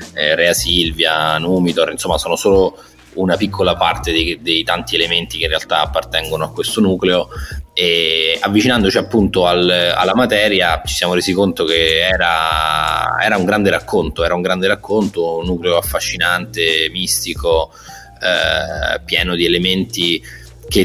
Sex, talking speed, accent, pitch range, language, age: male, 140 wpm, native, 85-100 Hz, Italian, 20-39